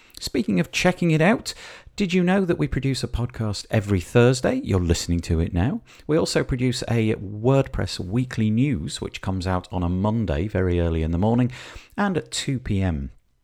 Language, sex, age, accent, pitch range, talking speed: English, male, 40-59, British, 85-135 Hz, 190 wpm